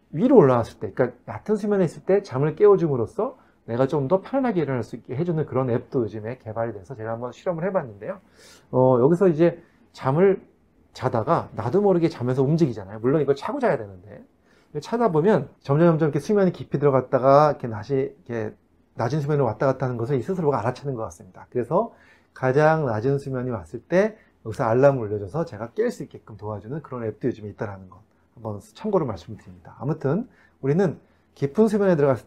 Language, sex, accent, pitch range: Korean, male, native, 110-170 Hz